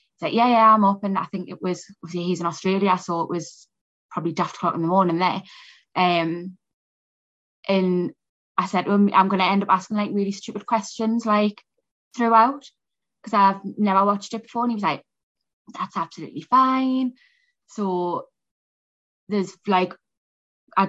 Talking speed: 160 wpm